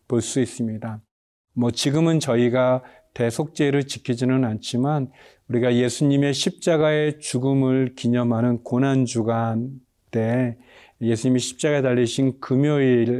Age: 40-59